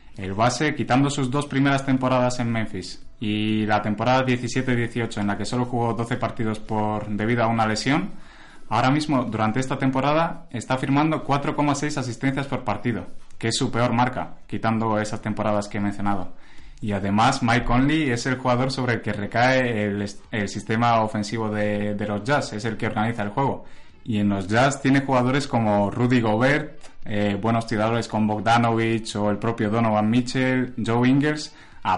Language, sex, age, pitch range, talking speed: Spanish, male, 20-39, 105-130 Hz, 175 wpm